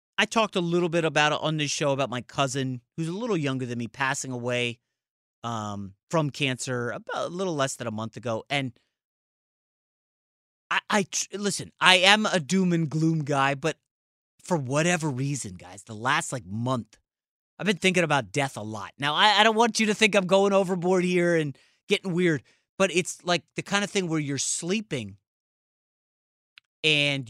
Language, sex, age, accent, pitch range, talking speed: English, male, 30-49, American, 130-195 Hz, 185 wpm